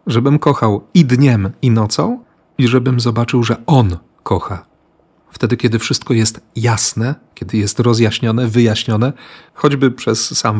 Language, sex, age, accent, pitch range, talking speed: Polish, male, 40-59, native, 110-130 Hz, 135 wpm